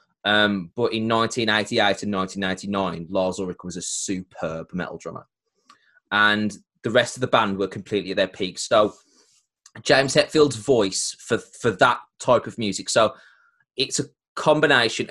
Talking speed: 150 wpm